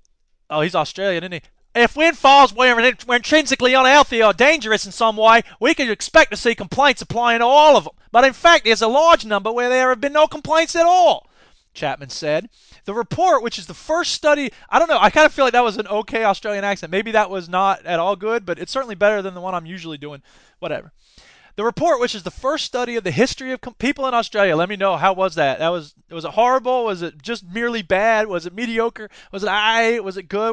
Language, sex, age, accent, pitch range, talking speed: English, male, 20-39, American, 195-265 Hz, 245 wpm